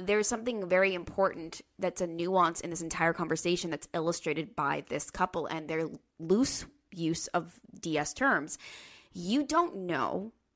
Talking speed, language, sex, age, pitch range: 150 wpm, English, female, 20-39, 165-200 Hz